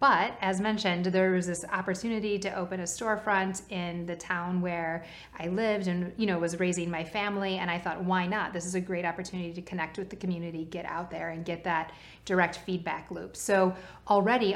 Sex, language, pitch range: female, English, 170-190 Hz